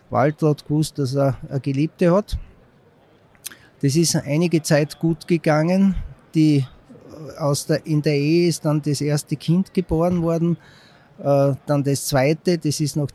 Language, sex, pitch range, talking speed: German, male, 145-165 Hz, 140 wpm